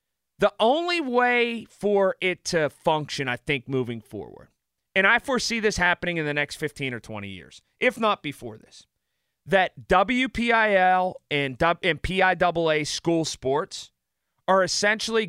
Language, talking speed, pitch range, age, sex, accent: English, 135 wpm, 150-205 Hz, 30-49, male, American